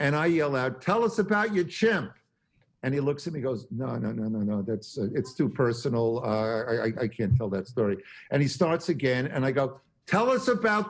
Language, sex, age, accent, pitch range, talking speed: English, male, 50-69, American, 120-170 Hz, 235 wpm